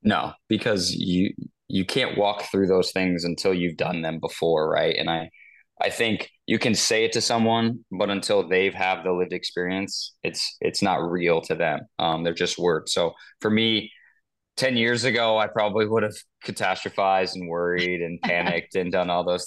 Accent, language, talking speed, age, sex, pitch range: American, English, 190 wpm, 20-39, male, 90-110 Hz